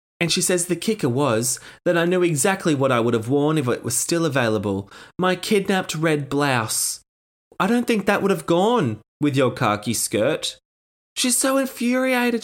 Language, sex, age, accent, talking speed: English, male, 20-39, Australian, 185 wpm